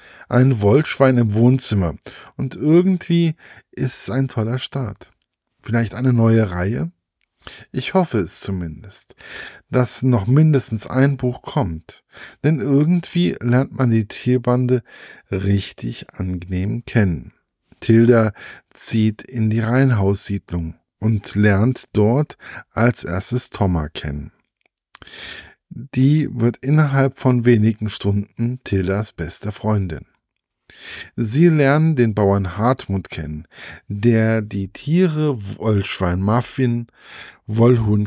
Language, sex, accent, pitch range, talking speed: German, male, German, 100-130 Hz, 105 wpm